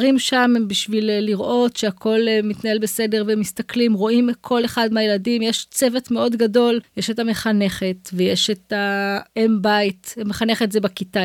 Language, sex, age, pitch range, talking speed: Hebrew, female, 20-39, 200-250 Hz, 140 wpm